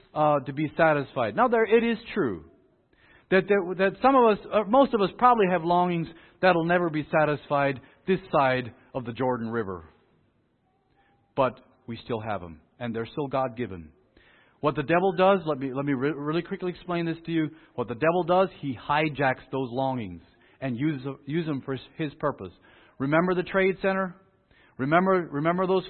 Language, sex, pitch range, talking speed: English, male, 135-190 Hz, 185 wpm